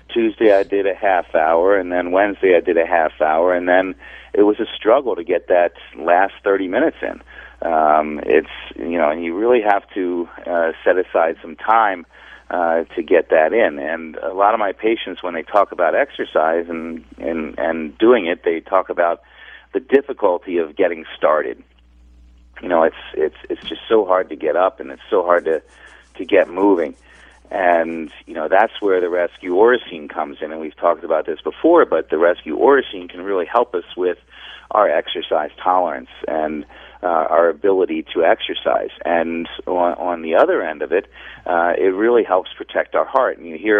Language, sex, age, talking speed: English, male, 40-59, 190 wpm